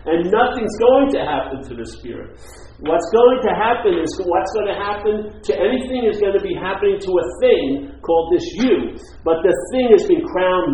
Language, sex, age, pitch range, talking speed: English, male, 50-69, 180-280 Hz, 200 wpm